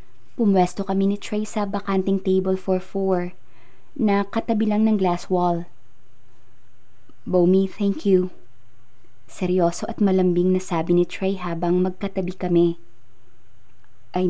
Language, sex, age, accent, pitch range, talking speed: Filipino, female, 20-39, native, 120-190 Hz, 115 wpm